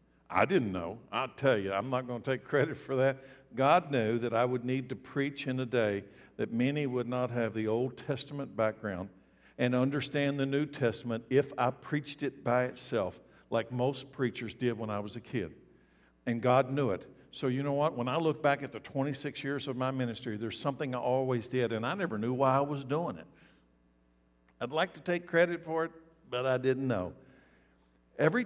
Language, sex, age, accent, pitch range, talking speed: English, male, 60-79, American, 115-165 Hz, 210 wpm